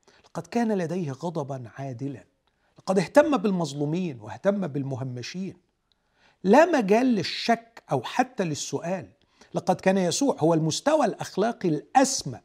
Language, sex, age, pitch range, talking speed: Arabic, male, 50-69, 130-200 Hz, 110 wpm